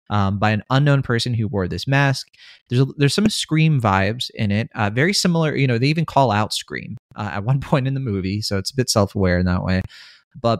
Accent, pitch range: American, 105-140 Hz